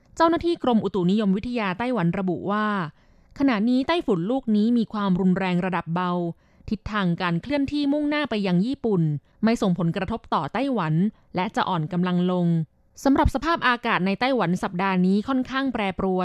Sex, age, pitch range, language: female, 20-39, 180-240 Hz, Thai